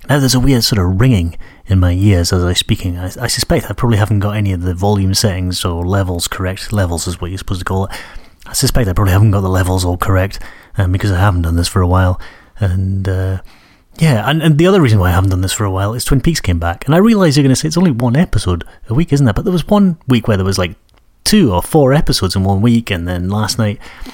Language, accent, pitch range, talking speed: English, British, 95-120 Hz, 270 wpm